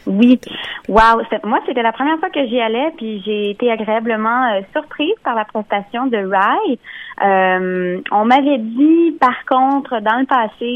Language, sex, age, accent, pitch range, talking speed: French, female, 20-39, Canadian, 195-245 Hz, 175 wpm